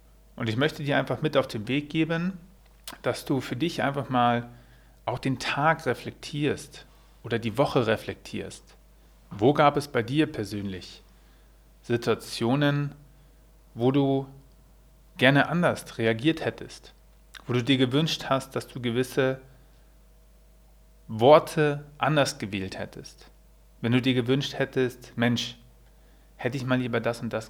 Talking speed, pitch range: 135 wpm, 115-150 Hz